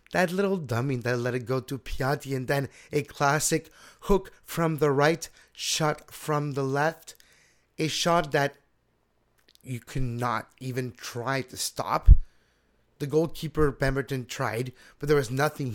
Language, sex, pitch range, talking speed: English, male, 125-165 Hz, 145 wpm